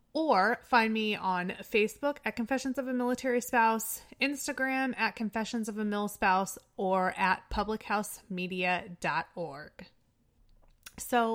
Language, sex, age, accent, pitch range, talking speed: English, female, 20-39, American, 185-255 Hz, 115 wpm